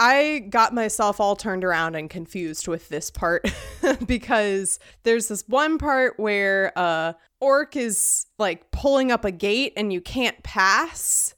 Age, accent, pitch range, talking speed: 20-39, American, 190-250 Hz, 155 wpm